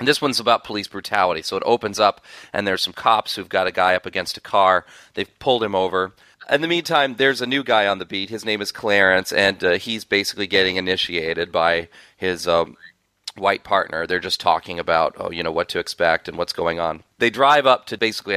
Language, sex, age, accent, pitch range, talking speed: English, male, 40-59, American, 95-115 Hz, 230 wpm